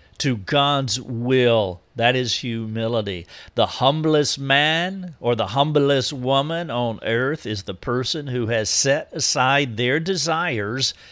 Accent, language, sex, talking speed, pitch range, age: American, English, male, 130 wpm, 105-145 Hz, 50-69